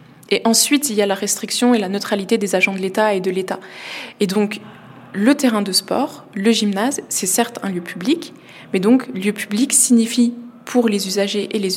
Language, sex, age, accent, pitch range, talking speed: French, female, 20-39, French, 195-235 Hz, 205 wpm